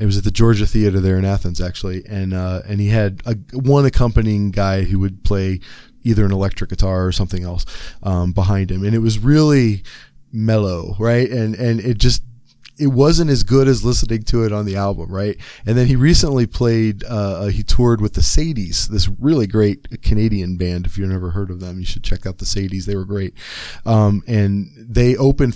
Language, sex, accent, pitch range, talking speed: English, male, American, 95-120 Hz, 210 wpm